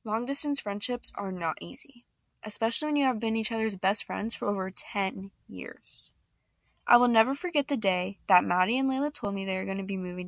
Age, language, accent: 10-29, English, American